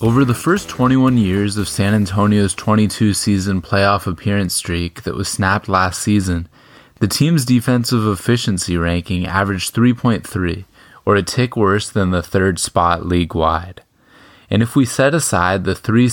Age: 20-39